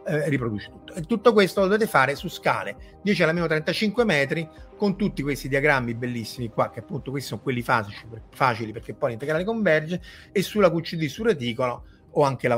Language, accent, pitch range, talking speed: Italian, native, 120-175 Hz, 190 wpm